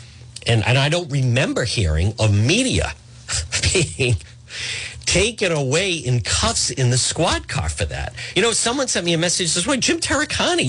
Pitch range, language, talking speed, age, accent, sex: 115-165 Hz, English, 170 wpm, 50-69, American, male